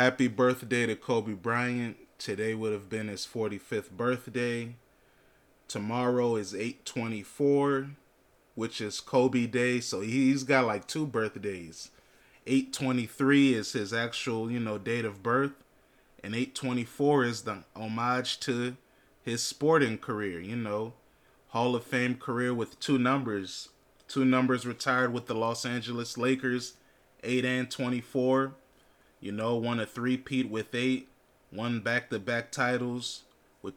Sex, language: male, English